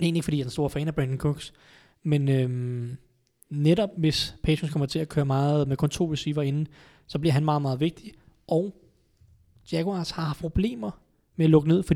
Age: 20-39